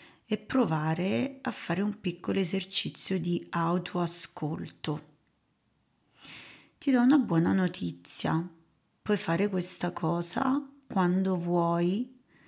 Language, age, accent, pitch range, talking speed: Italian, 30-49, native, 165-190 Hz, 95 wpm